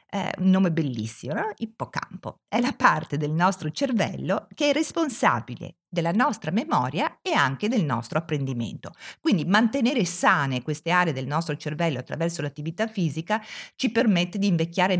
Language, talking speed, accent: Italian, 155 wpm, native